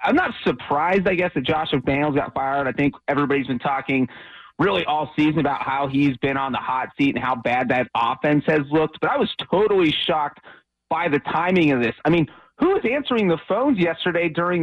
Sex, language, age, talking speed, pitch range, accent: male, English, 30-49, 215 wpm, 145-200 Hz, American